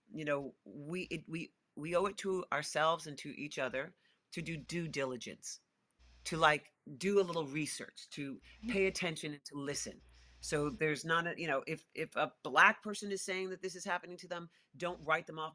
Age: 40-59